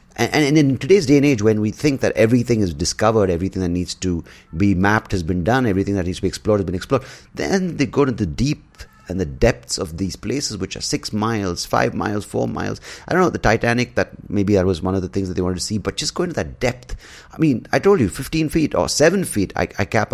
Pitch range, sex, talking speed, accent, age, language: 85-120 Hz, male, 260 wpm, Indian, 30-49, English